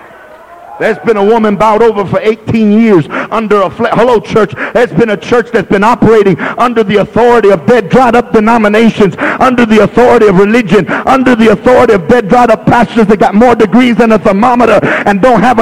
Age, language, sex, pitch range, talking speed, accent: 50-69, English, male, 215-250 Hz, 195 wpm, American